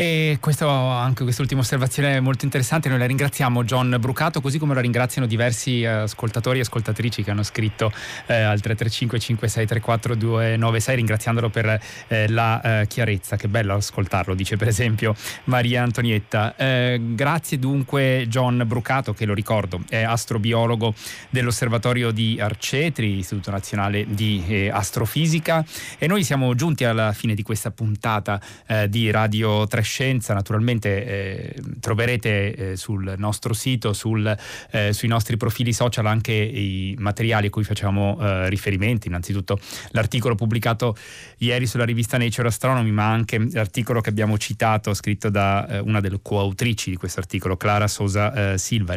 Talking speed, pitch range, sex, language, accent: 145 wpm, 105-125 Hz, male, Italian, native